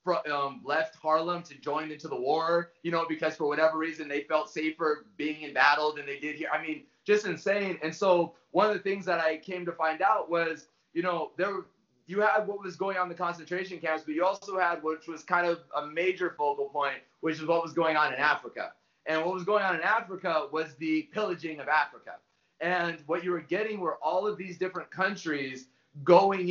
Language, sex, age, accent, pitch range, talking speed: English, male, 30-49, American, 150-180 Hz, 225 wpm